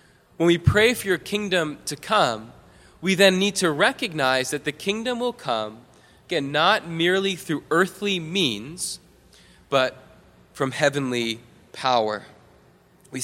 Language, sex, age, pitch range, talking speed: English, male, 20-39, 125-165 Hz, 130 wpm